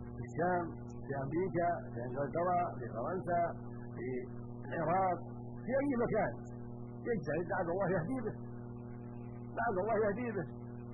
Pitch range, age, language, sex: 120-170 Hz, 60-79, Arabic, male